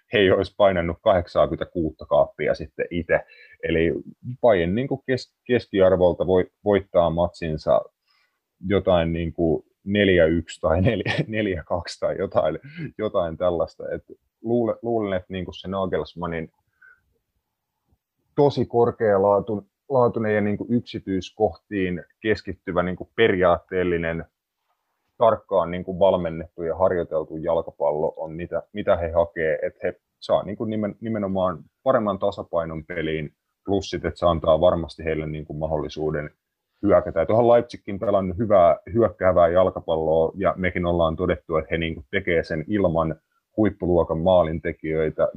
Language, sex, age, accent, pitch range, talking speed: Finnish, male, 30-49, native, 85-110 Hz, 100 wpm